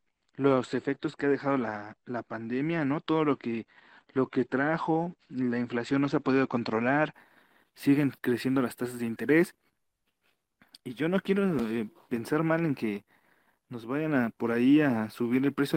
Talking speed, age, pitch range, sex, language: 175 wpm, 40-59, 120-155 Hz, male, Spanish